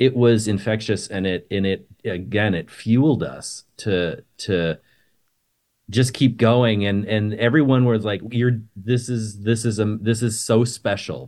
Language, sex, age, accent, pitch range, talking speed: English, male, 30-49, American, 95-120 Hz, 165 wpm